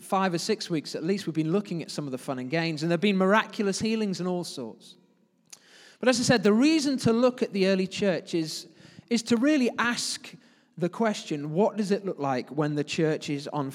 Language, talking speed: English, 230 wpm